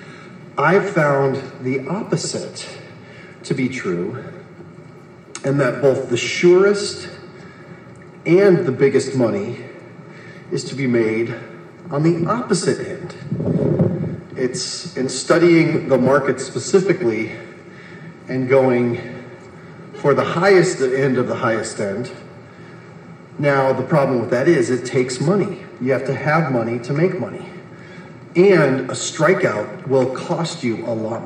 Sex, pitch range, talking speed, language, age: male, 125-180 Hz, 125 wpm, English, 40-59